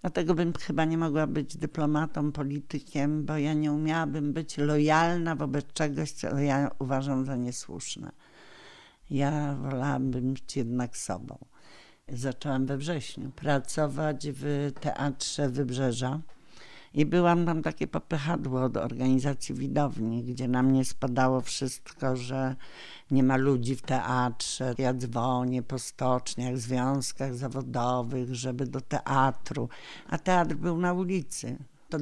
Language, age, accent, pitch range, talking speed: Polish, 50-69, native, 130-150 Hz, 125 wpm